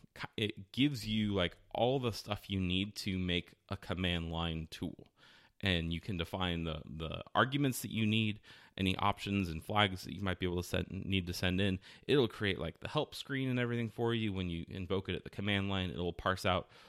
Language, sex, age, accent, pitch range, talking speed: English, male, 30-49, American, 85-105 Hz, 215 wpm